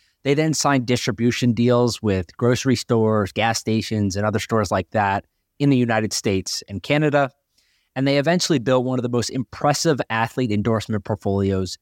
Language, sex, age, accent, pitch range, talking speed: English, male, 20-39, American, 105-130 Hz, 170 wpm